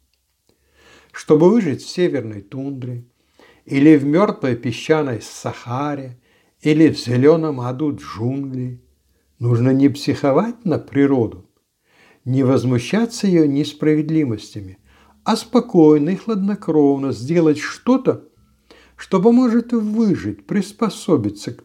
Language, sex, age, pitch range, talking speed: Russian, male, 60-79, 125-175 Hz, 95 wpm